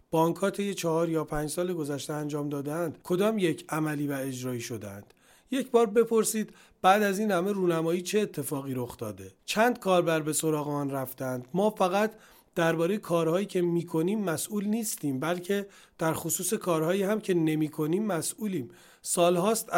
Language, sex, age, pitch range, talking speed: Persian, male, 40-59, 155-200 Hz, 150 wpm